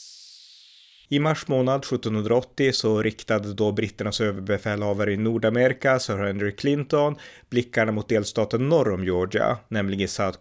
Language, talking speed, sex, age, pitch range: Swedish, 125 wpm, male, 30-49, 100-120 Hz